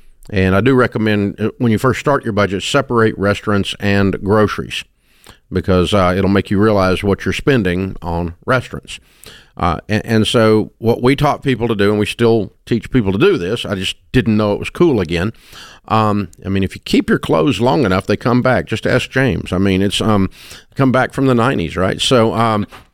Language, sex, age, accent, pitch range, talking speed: English, male, 50-69, American, 95-130 Hz, 205 wpm